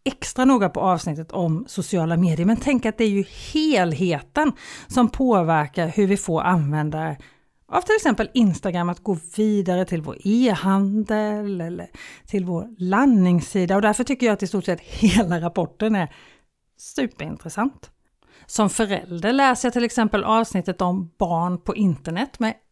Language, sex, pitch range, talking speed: Swedish, female, 175-220 Hz, 155 wpm